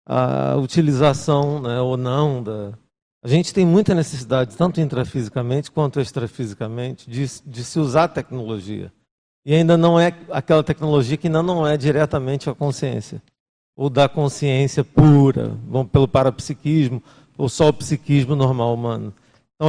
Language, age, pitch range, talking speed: Portuguese, 50-69, 130-155 Hz, 145 wpm